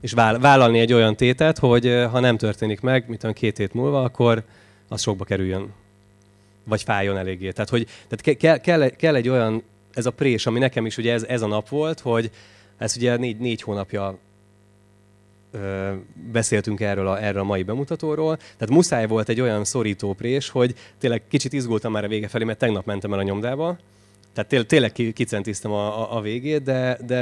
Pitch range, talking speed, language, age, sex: 105-125 Hz, 185 wpm, Hungarian, 20-39, male